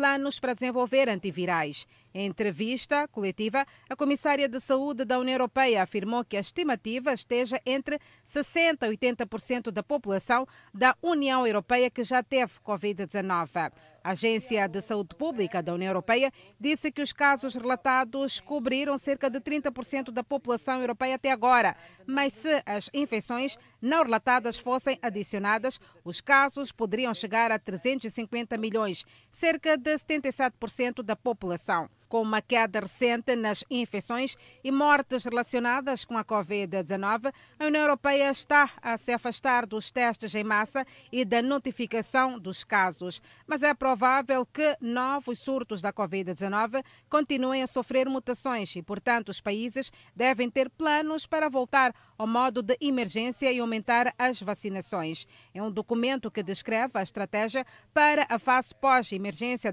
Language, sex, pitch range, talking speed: Portuguese, female, 215-270 Hz, 145 wpm